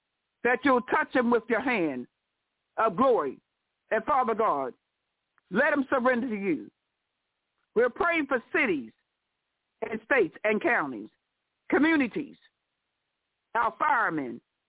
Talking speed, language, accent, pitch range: 115 wpm, English, American, 240-310 Hz